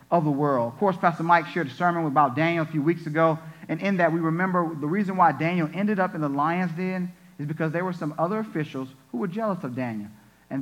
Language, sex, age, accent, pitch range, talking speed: English, male, 40-59, American, 130-165 Hz, 235 wpm